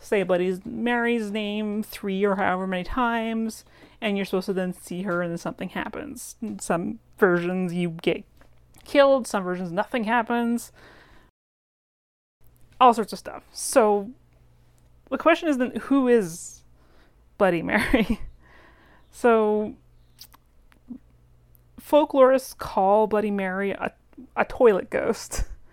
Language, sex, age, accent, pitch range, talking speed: English, female, 30-49, American, 185-240 Hz, 120 wpm